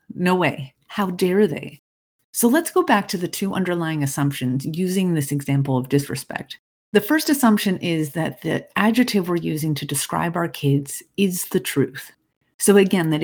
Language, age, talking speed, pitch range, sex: English, 30-49, 170 wpm, 165-220 Hz, female